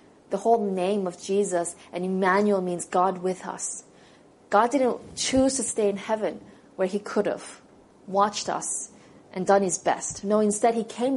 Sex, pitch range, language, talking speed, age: female, 195-245 Hz, English, 170 wpm, 20-39